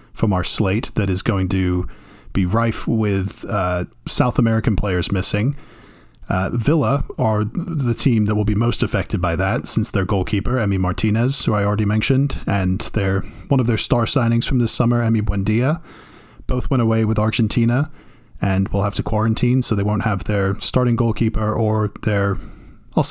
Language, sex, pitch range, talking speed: English, male, 105-125 Hz, 175 wpm